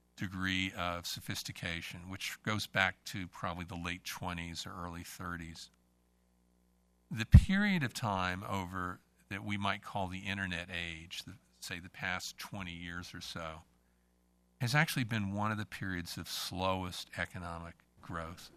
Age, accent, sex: 50-69, American, male